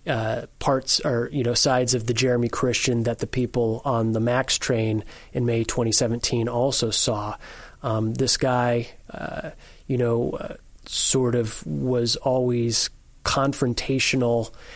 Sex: male